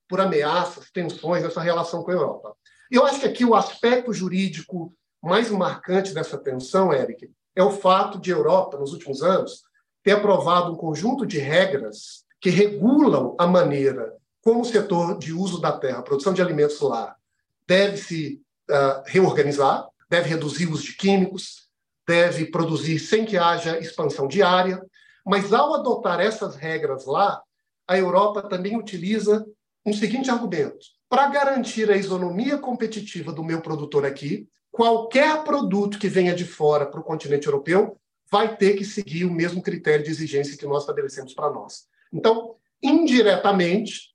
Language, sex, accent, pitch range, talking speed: English, male, Brazilian, 170-225 Hz, 155 wpm